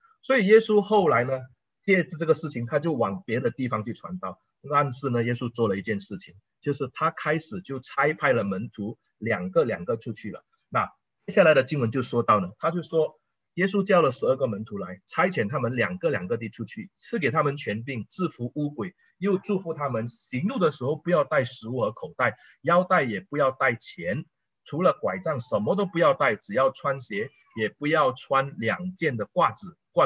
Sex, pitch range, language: male, 120-180 Hz, Chinese